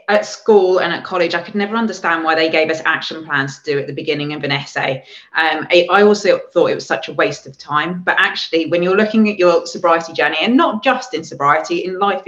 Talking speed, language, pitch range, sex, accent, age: 245 wpm, English, 160-205 Hz, female, British, 20-39